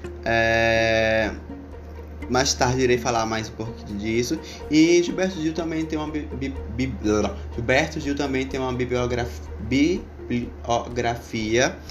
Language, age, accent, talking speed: Portuguese, 20-39, Brazilian, 130 wpm